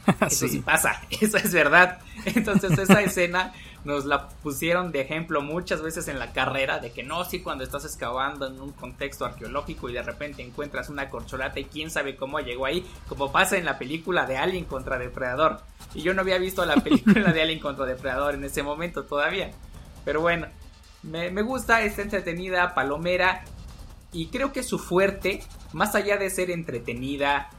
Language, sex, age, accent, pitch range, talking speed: Spanish, male, 20-39, Mexican, 135-185 Hz, 185 wpm